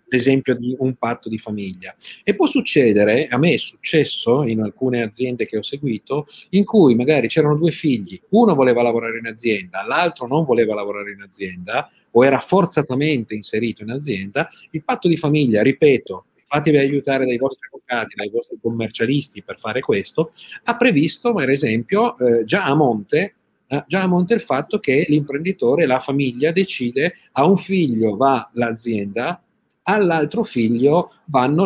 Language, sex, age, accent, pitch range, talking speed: Italian, male, 50-69, native, 115-170 Hz, 155 wpm